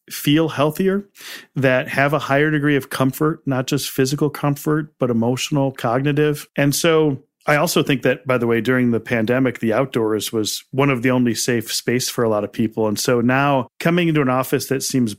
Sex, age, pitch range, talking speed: male, 40-59, 120-145 Hz, 200 wpm